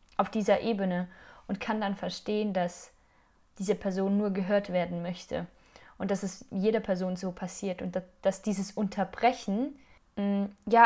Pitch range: 185-215 Hz